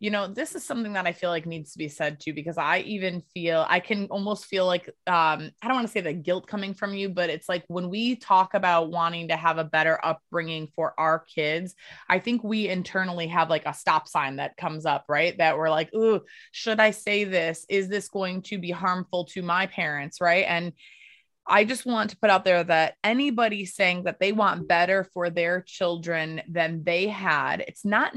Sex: female